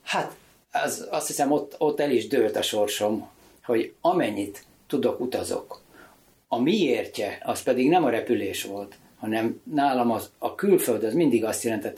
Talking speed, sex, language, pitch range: 155 wpm, male, Hungarian, 110-145 Hz